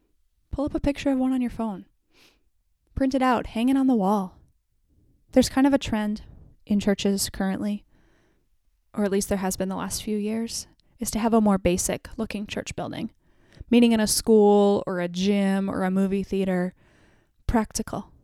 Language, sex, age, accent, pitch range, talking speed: English, female, 10-29, American, 195-225 Hz, 185 wpm